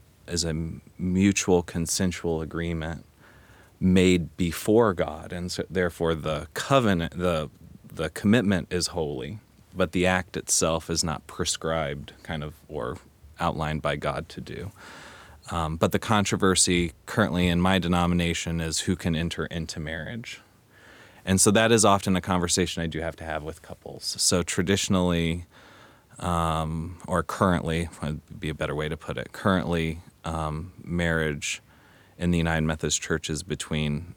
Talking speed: 150 wpm